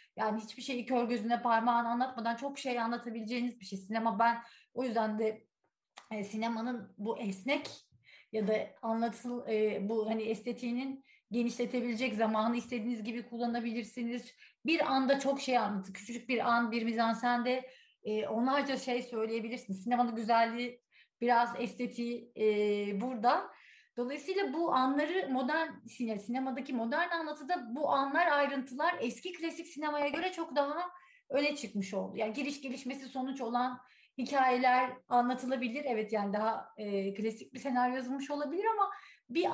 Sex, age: female, 30-49